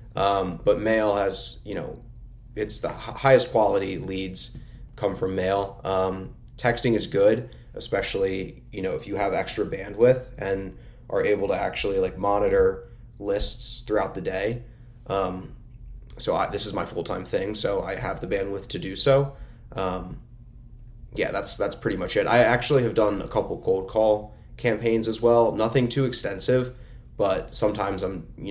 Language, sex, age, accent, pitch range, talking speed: English, male, 20-39, American, 95-120 Hz, 170 wpm